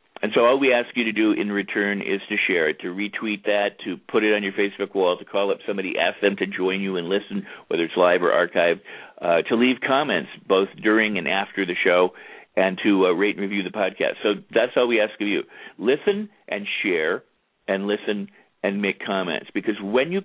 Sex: male